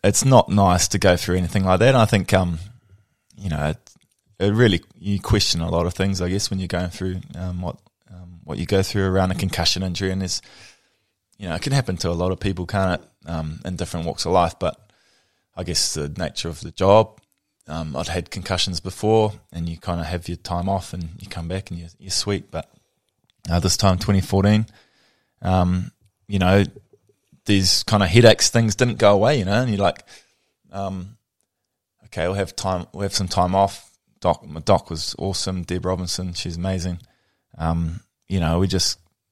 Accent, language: Australian, English